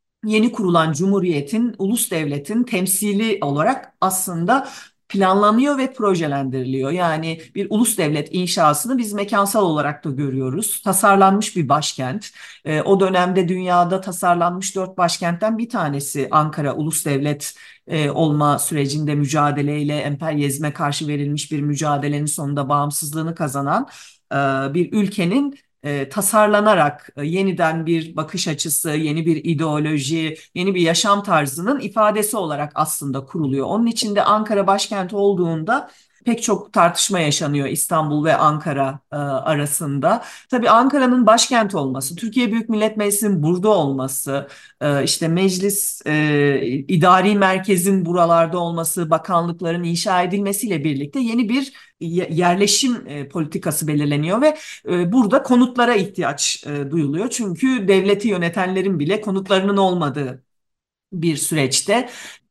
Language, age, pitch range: Turkish, 50-69, 150-200 Hz